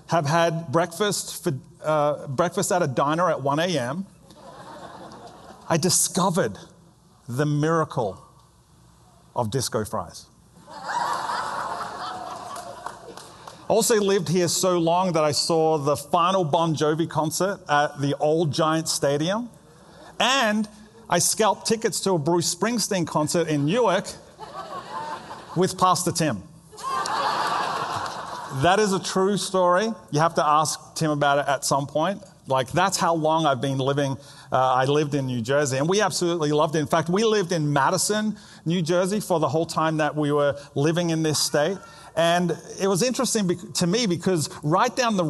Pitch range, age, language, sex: 150-185 Hz, 30-49, English, male